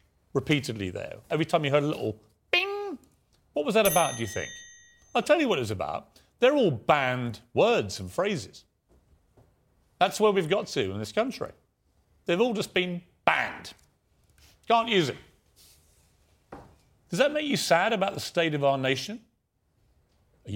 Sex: male